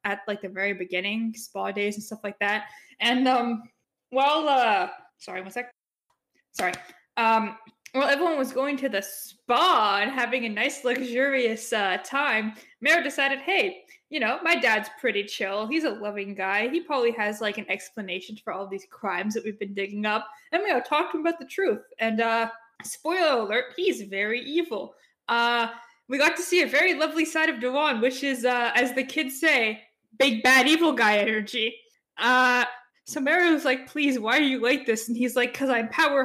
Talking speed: 195 wpm